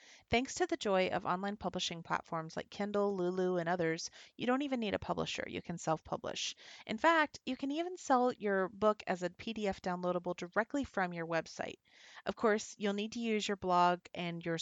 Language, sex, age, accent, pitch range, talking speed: English, female, 30-49, American, 175-230 Hz, 195 wpm